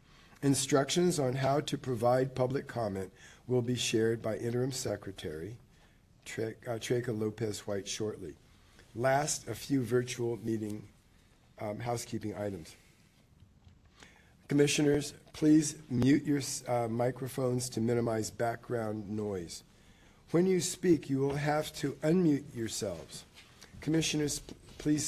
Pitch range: 110-140 Hz